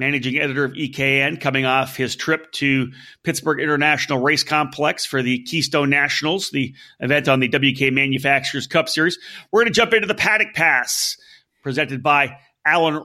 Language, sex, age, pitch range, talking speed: English, male, 40-59, 140-195 Hz, 165 wpm